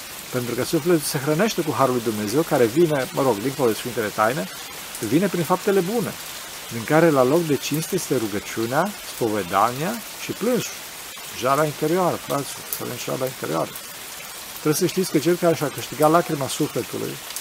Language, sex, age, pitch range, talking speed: Romanian, male, 40-59, 130-170 Hz, 170 wpm